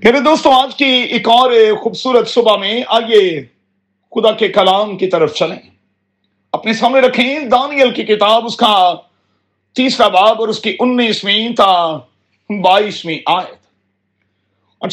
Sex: male